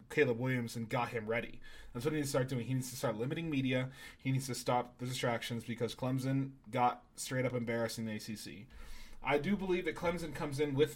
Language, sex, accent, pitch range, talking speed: English, male, American, 115-145 Hz, 225 wpm